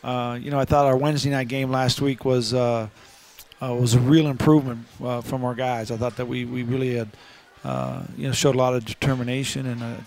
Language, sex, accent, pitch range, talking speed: English, male, American, 120-135 Hz, 230 wpm